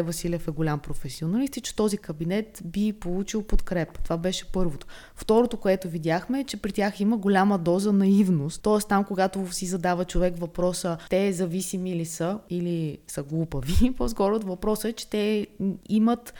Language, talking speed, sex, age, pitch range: Bulgarian, 170 wpm, female, 20-39, 170-210 Hz